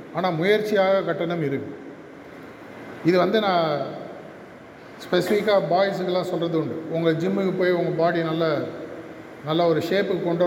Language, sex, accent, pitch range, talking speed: Tamil, male, native, 170-205 Hz, 120 wpm